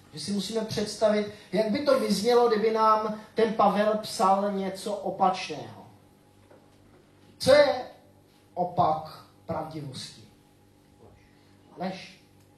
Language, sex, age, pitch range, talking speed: Czech, male, 30-49, 150-210 Hz, 95 wpm